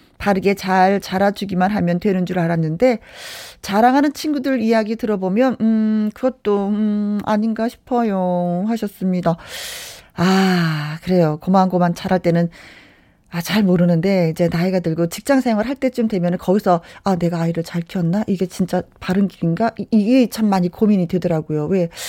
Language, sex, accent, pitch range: Korean, female, native, 180-230 Hz